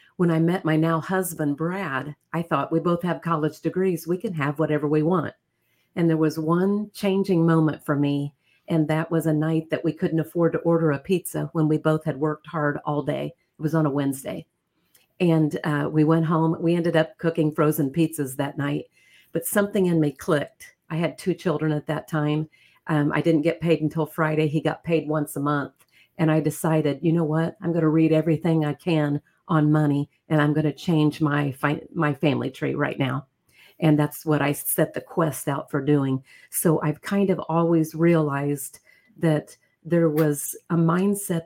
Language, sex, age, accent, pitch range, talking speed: English, female, 50-69, American, 150-170 Hz, 205 wpm